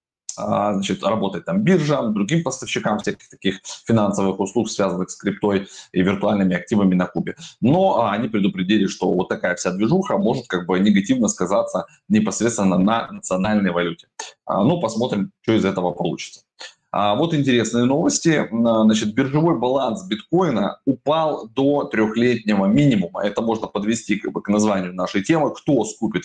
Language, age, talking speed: Russian, 20-39, 145 wpm